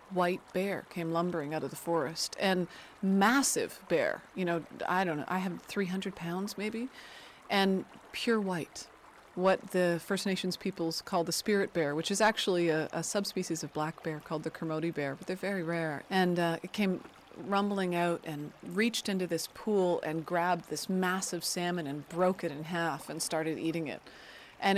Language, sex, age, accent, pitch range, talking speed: English, female, 30-49, American, 165-195 Hz, 185 wpm